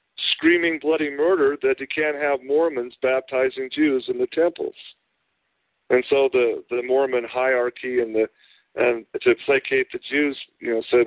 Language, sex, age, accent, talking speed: English, male, 50-69, American, 155 wpm